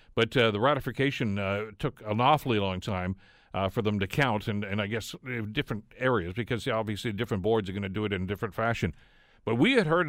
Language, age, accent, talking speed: English, 50-69, American, 225 wpm